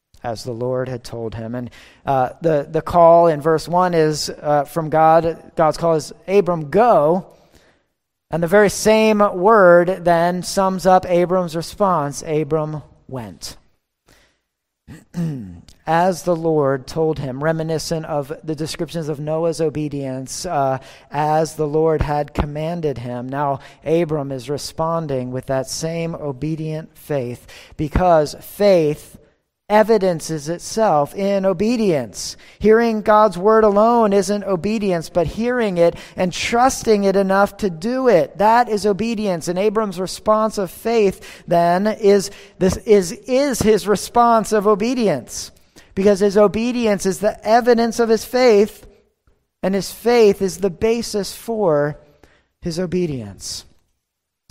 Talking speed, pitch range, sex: 130 wpm, 150-205 Hz, male